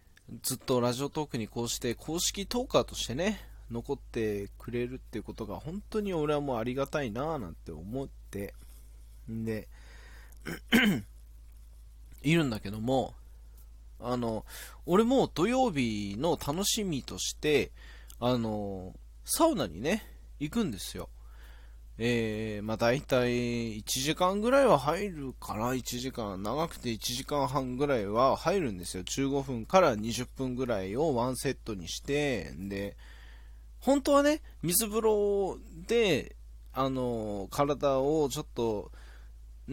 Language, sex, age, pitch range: Japanese, male, 20-39, 90-145 Hz